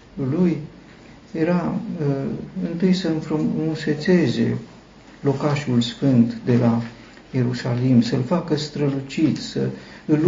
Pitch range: 120-170 Hz